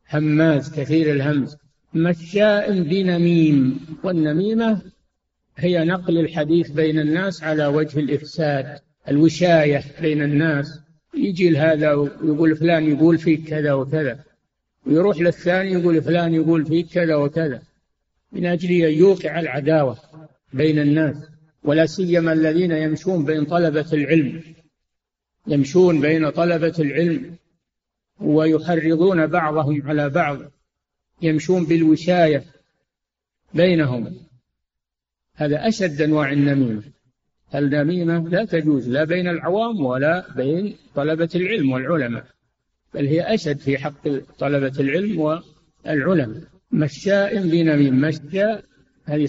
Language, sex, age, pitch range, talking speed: Arabic, male, 60-79, 145-170 Hz, 105 wpm